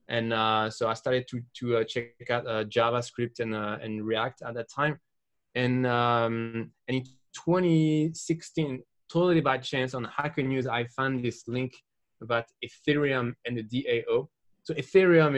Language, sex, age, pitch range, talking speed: English, male, 20-39, 115-135 Hz, 160 wpm